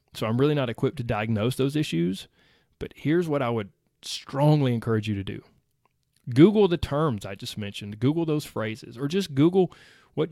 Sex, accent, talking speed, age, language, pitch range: male, American, 185 wpm, 30-49, English, 130-200 Hz